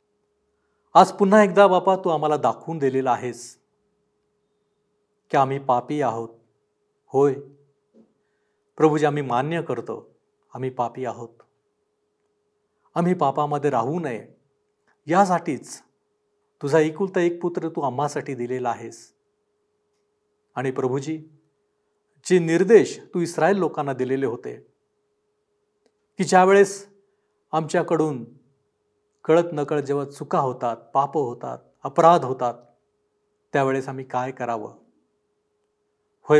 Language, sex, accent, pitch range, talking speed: Marathi, male, native, 135-210 Hz, 75 wpm